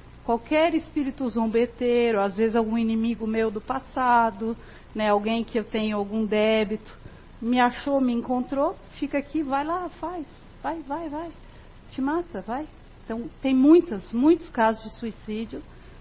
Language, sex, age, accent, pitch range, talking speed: Portuguese, female, 50-69, Brazilian, 215-280 Hz, 145 wpm